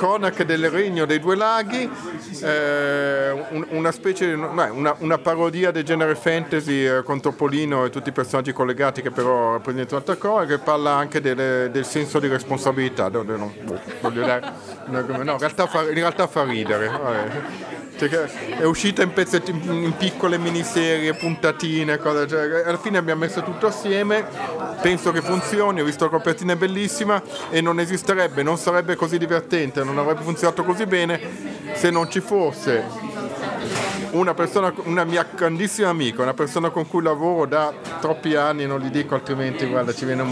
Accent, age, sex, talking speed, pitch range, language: native, 50-69, male, 150 wpm, 145-185 Hz, Italian